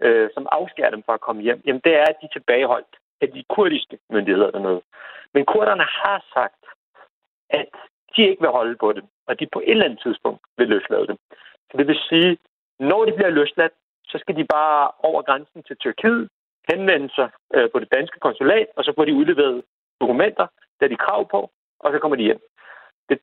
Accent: native